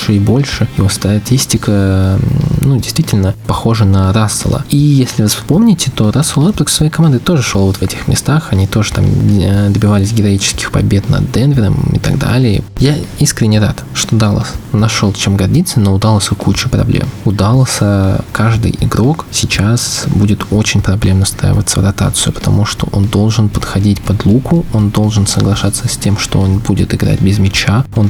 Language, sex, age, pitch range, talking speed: Russian, male, 20-39, 100-130 Hz, 170 wpm